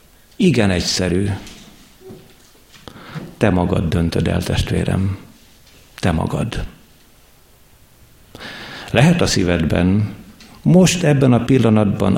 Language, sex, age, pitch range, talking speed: Hungarian, male, 60-79, 95-115 Hz, 80 wpm